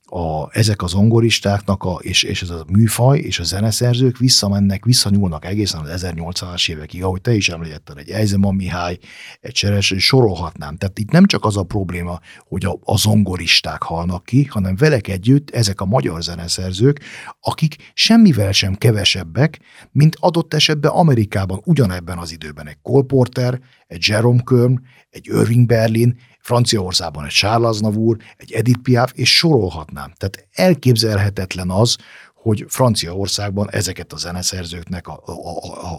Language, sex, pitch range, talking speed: Hungarian, male, 90-125 Hz, 145 wpm